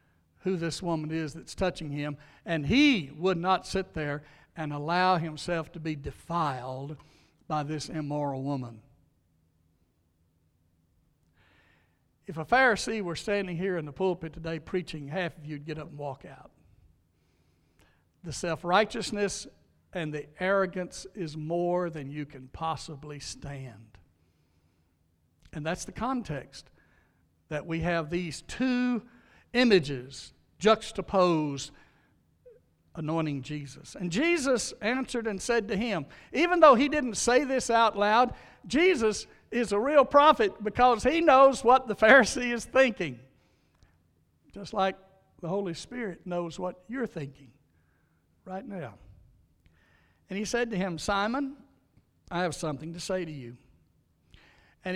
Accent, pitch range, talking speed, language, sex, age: American, 140-210 Hz, 130 wpm, English, male, 60-79